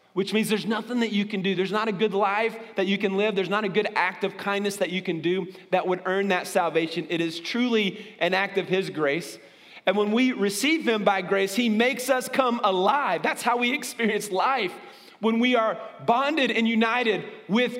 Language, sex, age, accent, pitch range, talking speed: English, male, 30-49, American, 180-235 Hz, 220 wpm